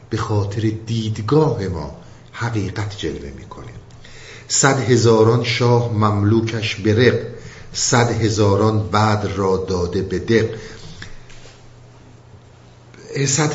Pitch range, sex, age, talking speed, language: 105-125 Hz, male, 50-69, 85 wpm, Persian